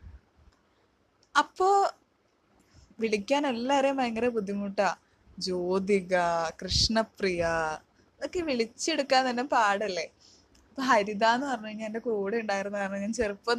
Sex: female